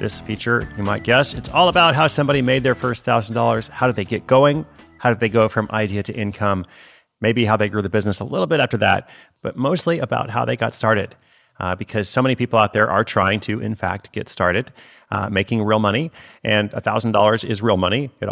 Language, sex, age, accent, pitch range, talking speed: English, male, 30-49, American, 100-125 Hz, 225 wpm